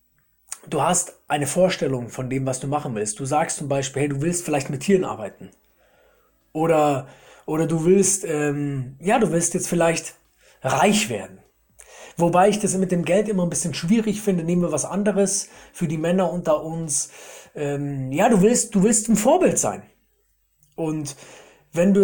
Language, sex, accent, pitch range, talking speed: German, male, German, 145-190 Hz, 175 wpm